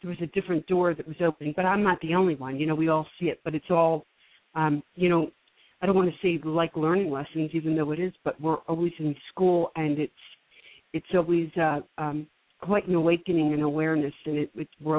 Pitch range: 150-170 Hz